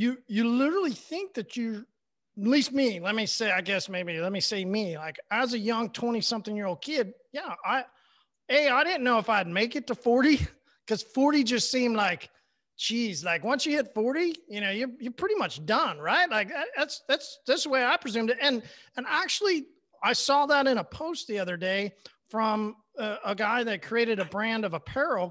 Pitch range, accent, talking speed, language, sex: 195-255 Hz, American, 205 wpm, English, male